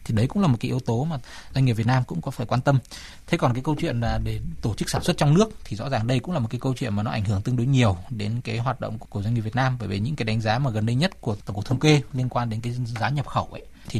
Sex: male